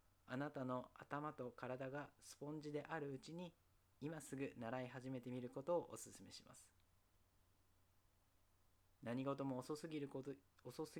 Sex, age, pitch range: male, 40-59, 95-140 Hz